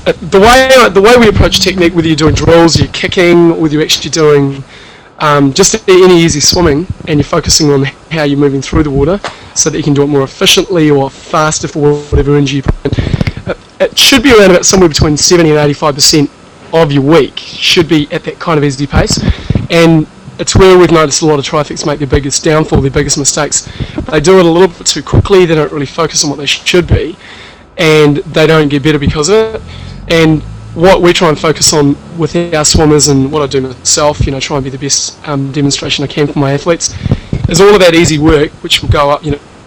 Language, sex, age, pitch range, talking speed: English, male, 20-39, 145-165 Hz, 225 wpm